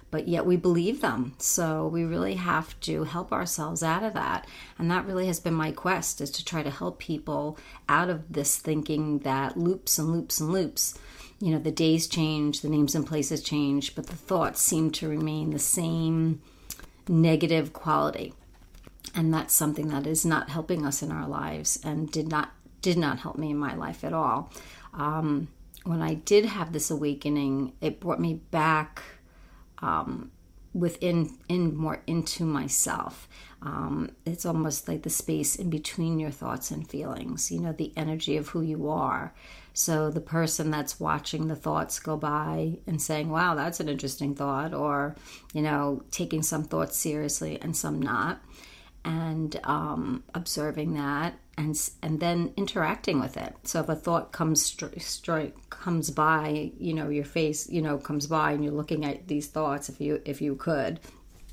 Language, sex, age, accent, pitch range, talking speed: English, female, 40-59, American, 145-165 Hz, 175 wpm